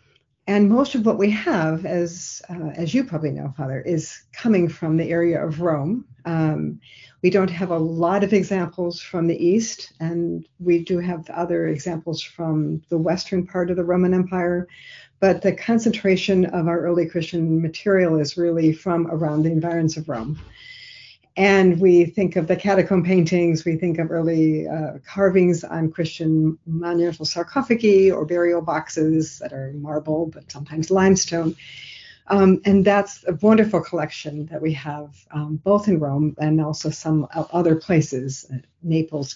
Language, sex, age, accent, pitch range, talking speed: English, female, 50-69, American, 155-185 Hz, 160 wpm